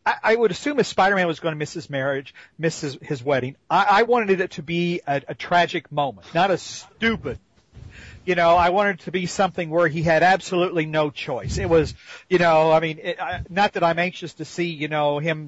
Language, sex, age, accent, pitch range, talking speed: English, male, 40-59, American, 155-210 Hz, 220 wpm